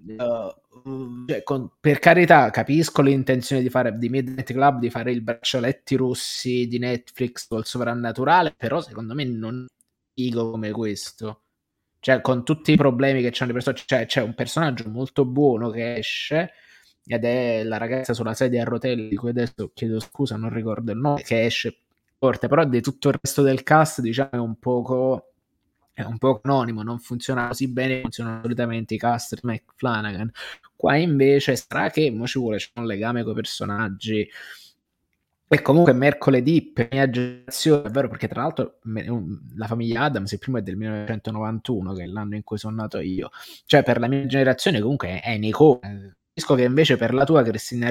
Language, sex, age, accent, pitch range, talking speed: Italian, male, 20-39, native, 115-135 Hz, 180 wpm